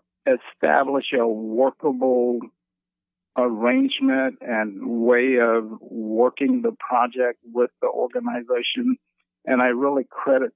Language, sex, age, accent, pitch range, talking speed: English, male, 50-69, American, 115-130 Hz, 95 wpm